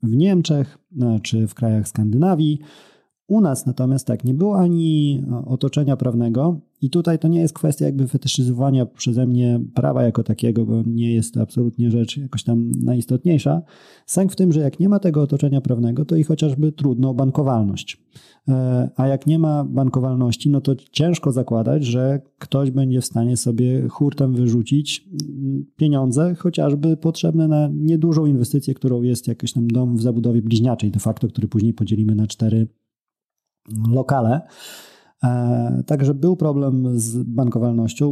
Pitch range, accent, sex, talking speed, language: 120-150 Hz, native, male, 150 wpm, Polish